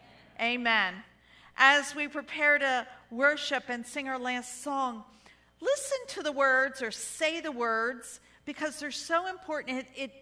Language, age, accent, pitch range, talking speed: English, 50-69, American, 195-255 Hz, 145 wpm